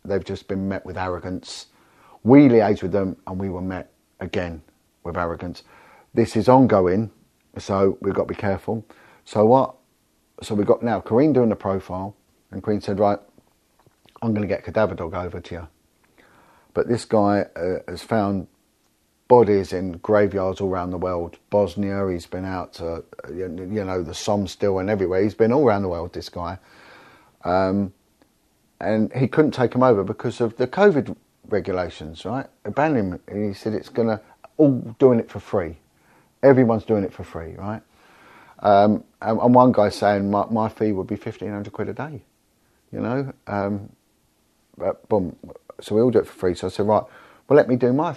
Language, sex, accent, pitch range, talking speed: English, male, British, 95-115 Hz, 185 wpm